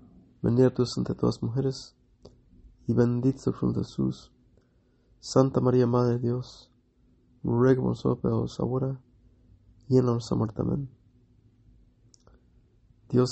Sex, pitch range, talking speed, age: male, 110-130 Hz, 120 wpm, 30-49